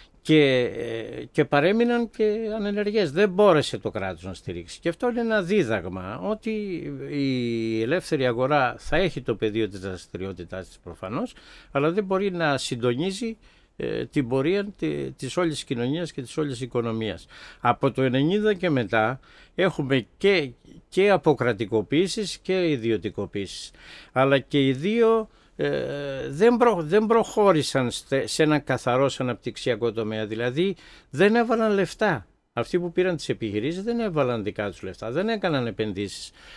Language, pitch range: Greek, 120-185 Hz